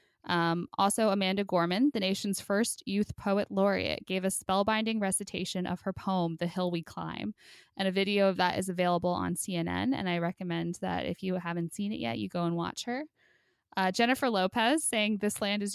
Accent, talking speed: American, 195 wpm